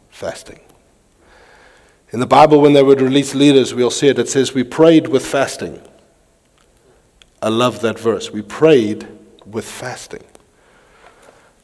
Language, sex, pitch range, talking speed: English, male, 130-165 Hz, 135 wpm